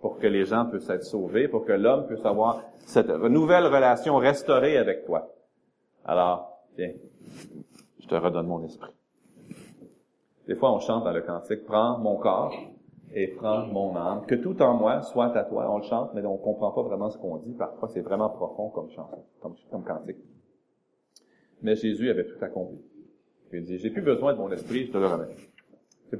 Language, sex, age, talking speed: French, male, 30-49, 195 wpm